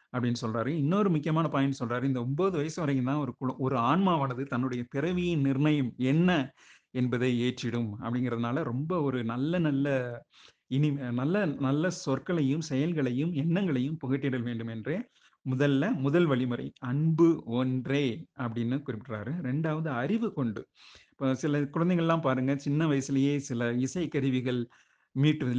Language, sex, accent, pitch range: Tamil, male, native, 125-155 Hz